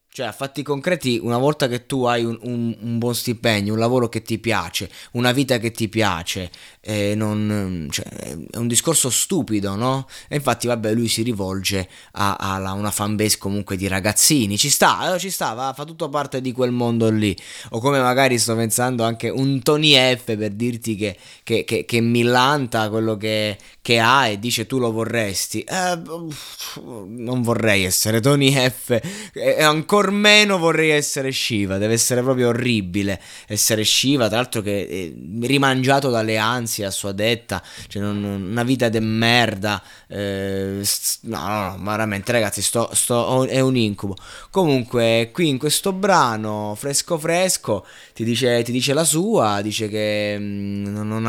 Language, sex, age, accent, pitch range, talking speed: Italian, male, 20-39, native, 105-130 Hz, 170 wpm